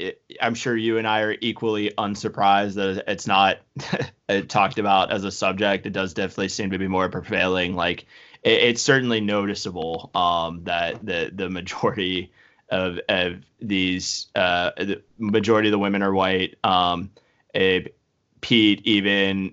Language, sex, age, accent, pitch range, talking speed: English, male, 20-39, American, 95-105 Hz, 150 wpm